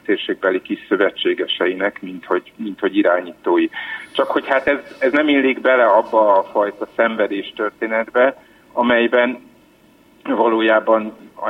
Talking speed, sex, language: 120 wpm, male, Hungarian